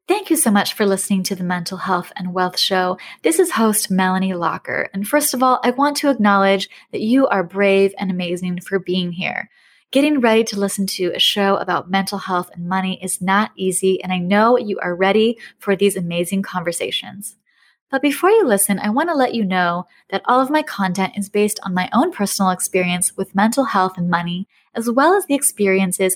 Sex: female